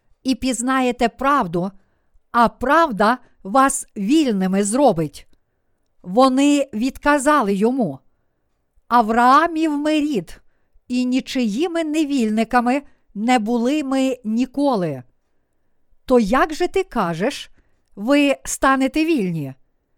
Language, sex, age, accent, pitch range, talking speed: Ukrainian, female, 50-69, native, 220-285 Hz, 85 wpm